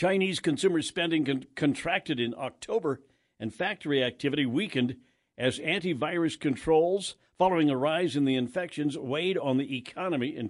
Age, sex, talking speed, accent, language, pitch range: 60-79, male, 135 wpm, American, English, 130-160 Hz